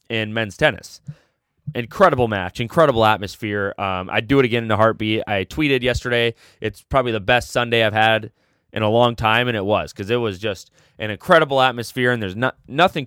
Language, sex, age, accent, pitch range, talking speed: English, male, 20-39, American, 105-145 Hz, 195 wpm